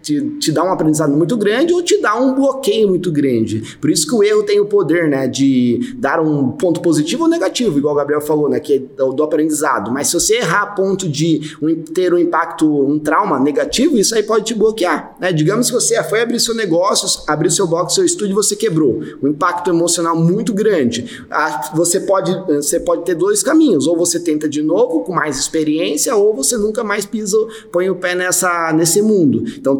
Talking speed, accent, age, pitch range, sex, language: 220 wpm, Brazilian, 20-39, 155-215 Hz, male, Portuguese